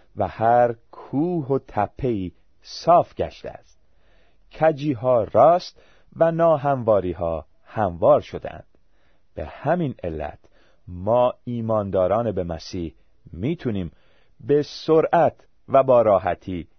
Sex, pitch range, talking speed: male, 95-145 Hz, 100 wpm